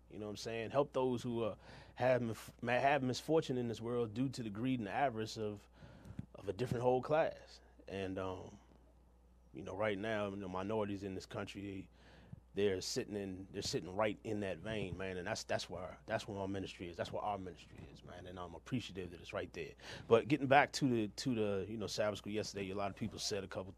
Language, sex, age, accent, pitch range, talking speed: English, male, 30-49, American, 90-110 Hz, 230 wpm